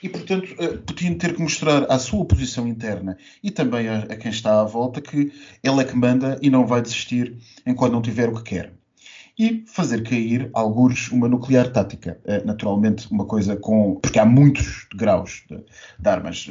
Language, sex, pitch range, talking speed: Portuguese, male, 115-150 Hz, 190 wpm